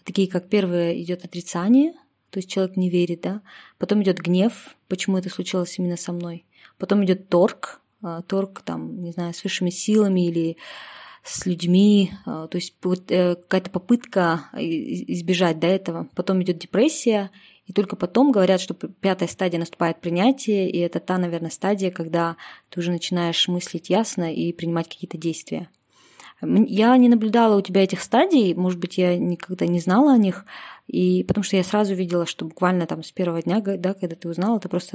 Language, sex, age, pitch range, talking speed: Russian, female, 20-39, 170-200 Hz, 170 wpm